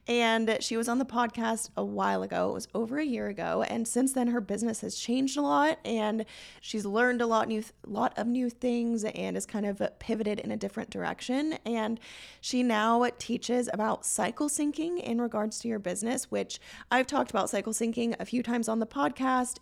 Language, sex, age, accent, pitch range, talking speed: English, female, 20-39, American, 205-250 Hz, 210 wpm